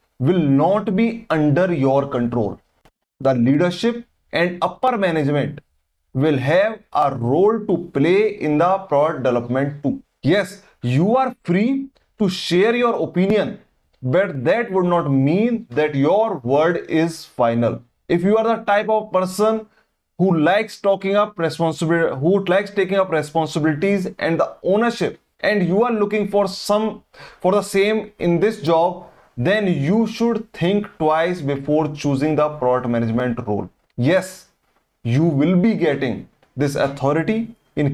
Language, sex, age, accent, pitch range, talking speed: English, male, 20-39, Indian, 140-200 Hz, 145 wpm